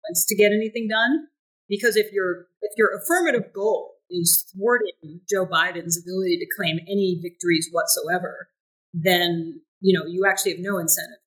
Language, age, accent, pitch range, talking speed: English, 40-59, American, 165-205 Hz, 150 wpm